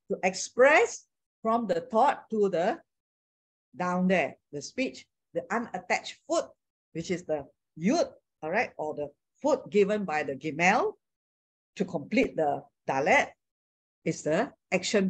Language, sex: English, female